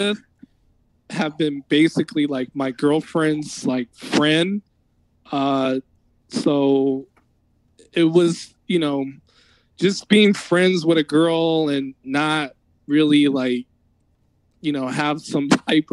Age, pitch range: 20-39, 135-165 Hz